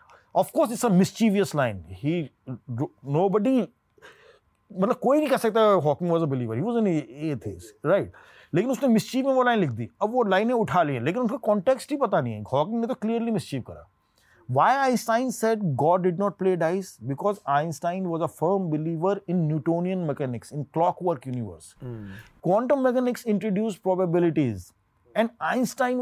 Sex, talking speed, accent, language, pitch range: male, 150 wpm, Indian, English, 140-215 Hz